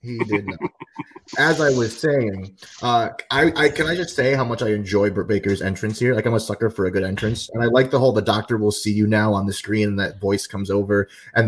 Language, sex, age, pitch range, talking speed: English, male, 30-49, 100-120 Hz, 260 wpm